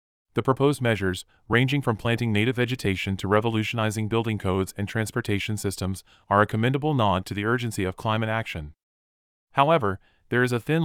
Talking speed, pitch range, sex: 165 wpm, 100-120 Hz, male